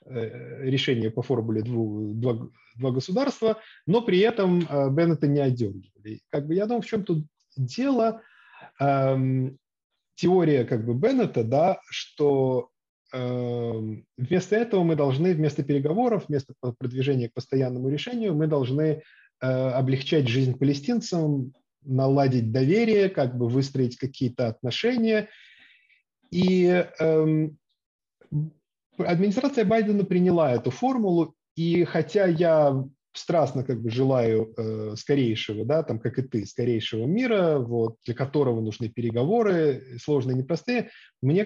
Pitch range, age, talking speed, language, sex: 130-180 Hz, 20-39, 120 wpm, English, male